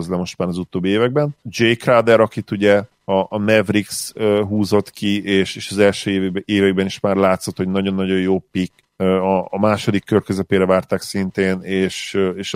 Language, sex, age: Hungarian, male, 40-59